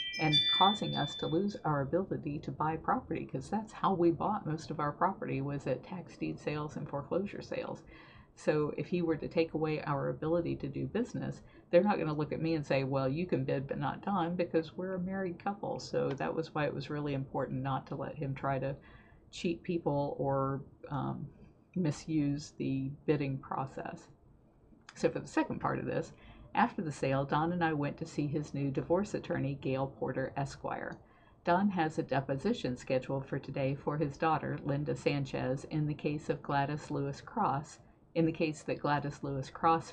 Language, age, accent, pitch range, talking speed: English, 50-69, American, 135-165 Hz, 195 wpm